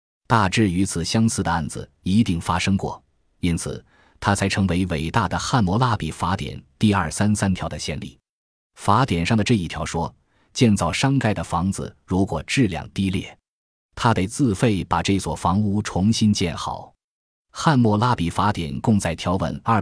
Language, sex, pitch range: Chinese, male, 85-110 Hz